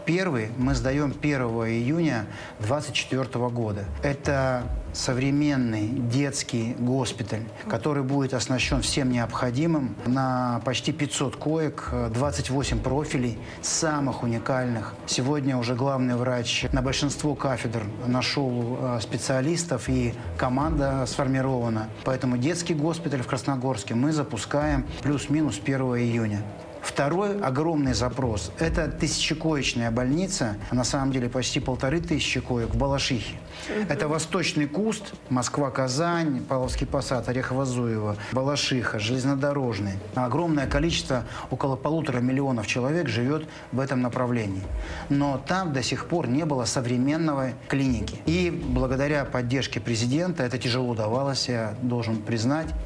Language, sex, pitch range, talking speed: Russian, male, 120-145 Hz, 110 wpm